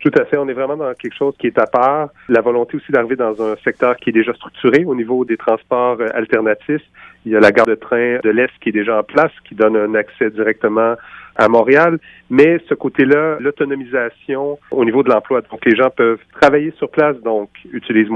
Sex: male